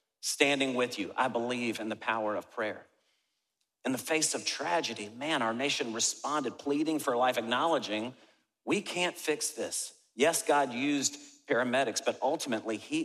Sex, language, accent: male, English, American